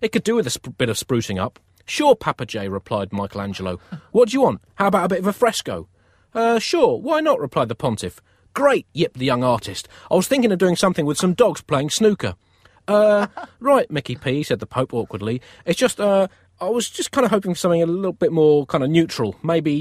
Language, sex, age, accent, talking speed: English, male, 30-49, British, 235 wpm